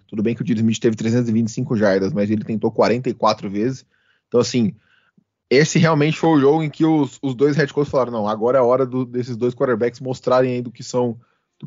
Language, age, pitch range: Portuguese, 20-39, 110-130 Hz